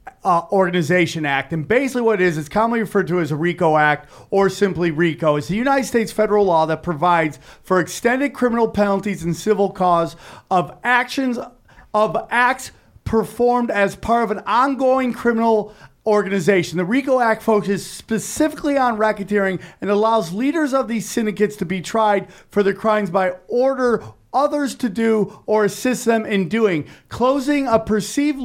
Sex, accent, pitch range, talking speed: male, American, 185-245 Hz, 165 wpm